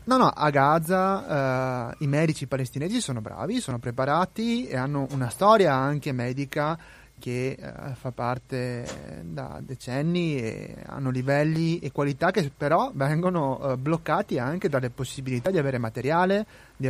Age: 30-49